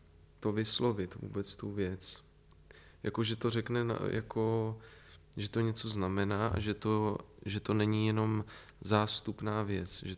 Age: 20-39